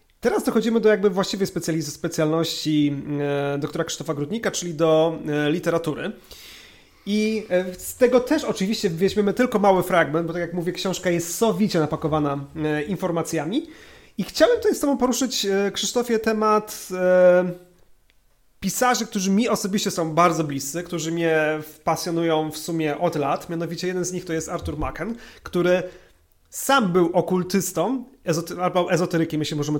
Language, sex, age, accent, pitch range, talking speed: Polish, male, 30-49, native, 160-200 Hz, 135 wpm